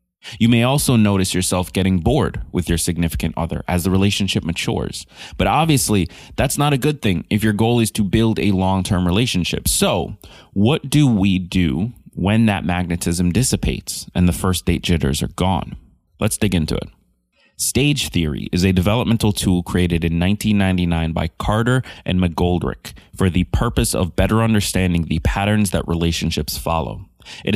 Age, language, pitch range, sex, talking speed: 20-39, English, 85-110 Hz, male, 165 wpm